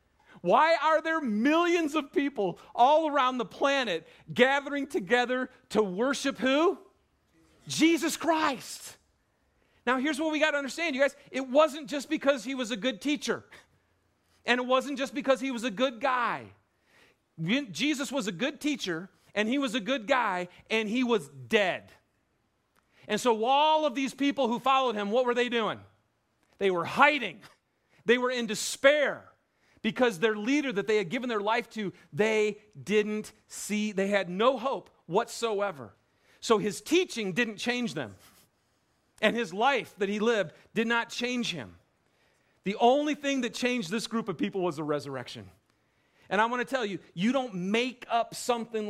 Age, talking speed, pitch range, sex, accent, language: 40-59, 170 wpm, 210-280 Hz, male, American, English